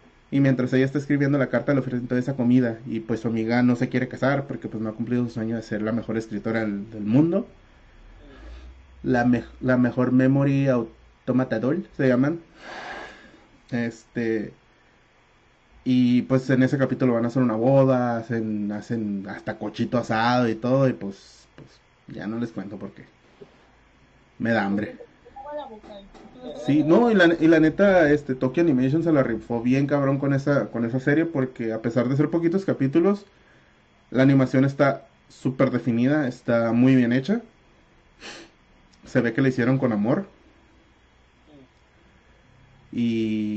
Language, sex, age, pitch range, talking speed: Spanish, male, 30-49, 115-140 Hz, 160 wpm